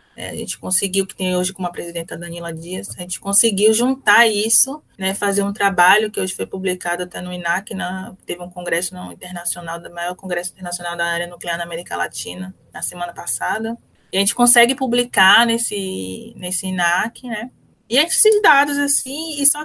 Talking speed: 190 wpm